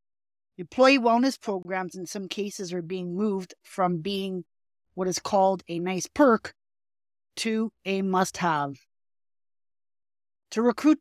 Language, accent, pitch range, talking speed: English, American, 175-220 Hz, 120 wpm